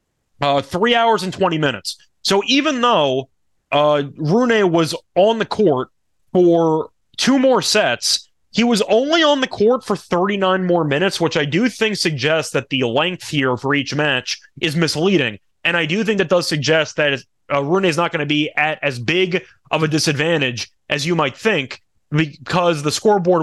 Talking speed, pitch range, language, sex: 180 wpm, 150-205 Hz, English, male